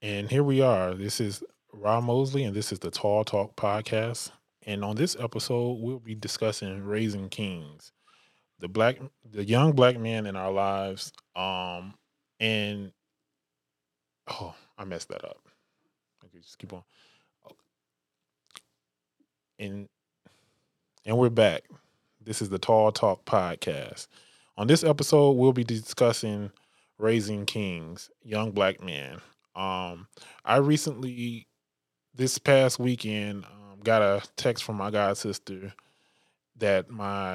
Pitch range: 95-115 Hz